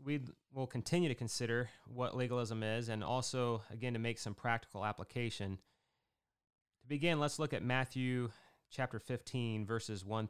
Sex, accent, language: male, American, English